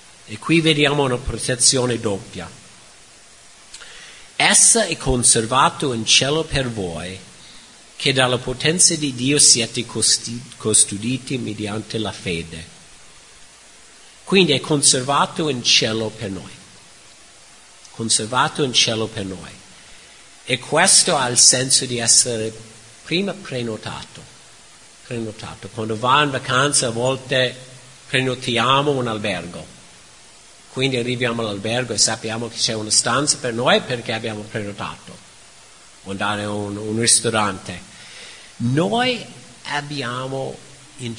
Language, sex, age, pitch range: Italian, male, 50-69, 110-140 Hz